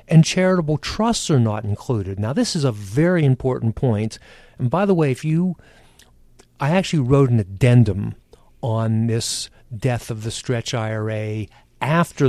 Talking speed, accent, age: 155 wpm, American, 50-69